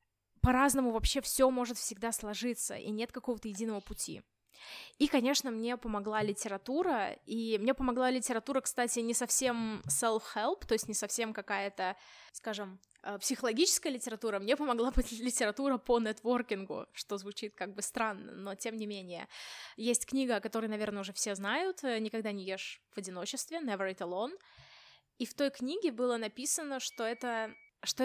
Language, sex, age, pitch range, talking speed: Russian, female, 20-39, 210-255 Hz, 150 wpm